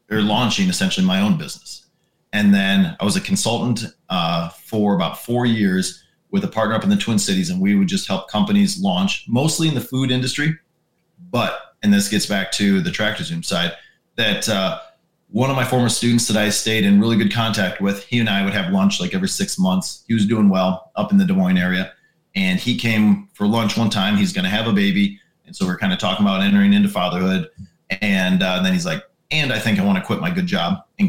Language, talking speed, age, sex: English, 235 wpm, 30-49, male